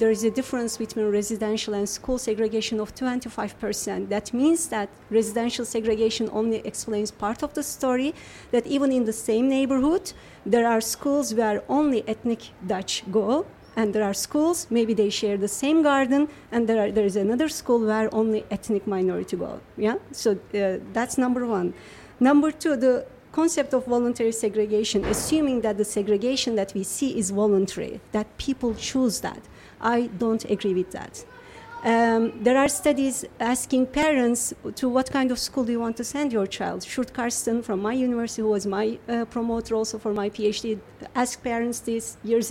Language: Dutch